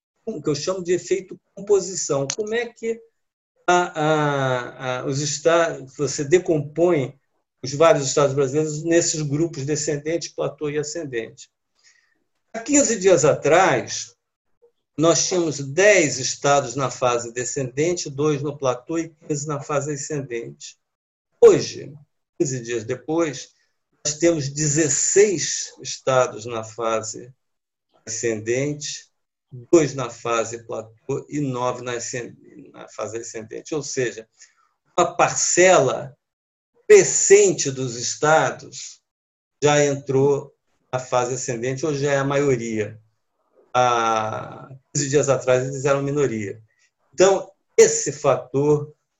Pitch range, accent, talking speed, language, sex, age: 125-165 Hz, Brazilian, 115 wpm, Portuguese, male, 50-69